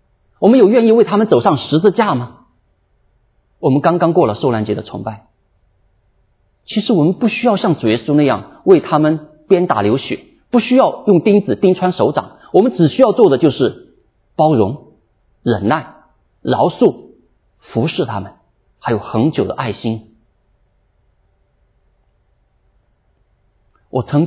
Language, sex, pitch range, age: Chinese, male, 100-160 Hz, 50-69